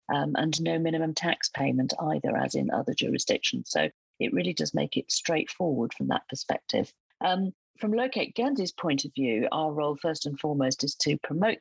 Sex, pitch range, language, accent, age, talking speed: female, 135-185 Hz, English, British, 40-59, 185 wpm